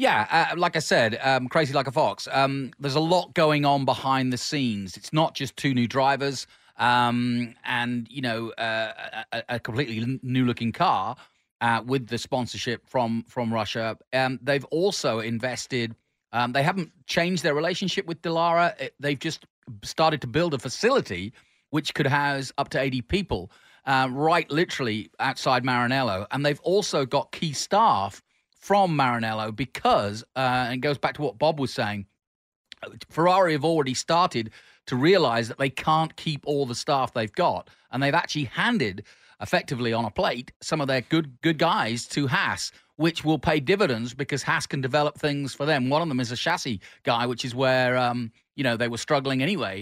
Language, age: English, 30-49